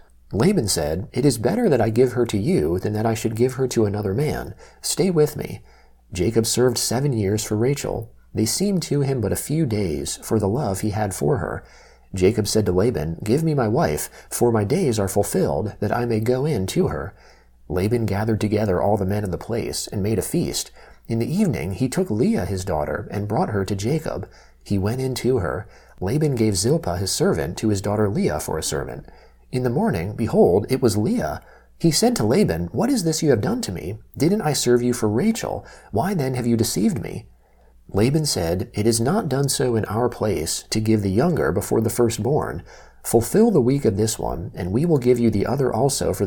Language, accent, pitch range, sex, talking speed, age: English, American, 100-130 Hz, male, 220 wpm, 30-49